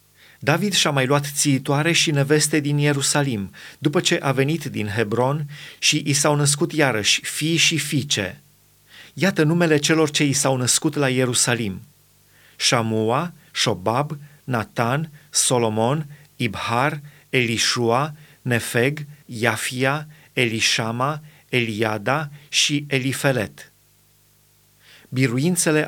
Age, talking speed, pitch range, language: 30-49, 105 wpm, 125-150 Hz, Romanian